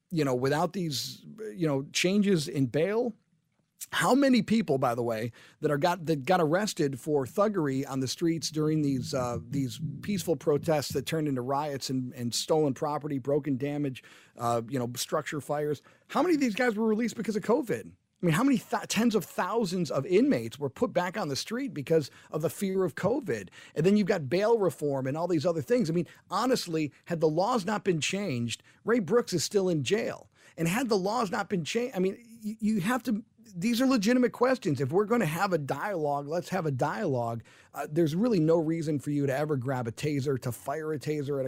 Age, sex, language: 40-59, male, English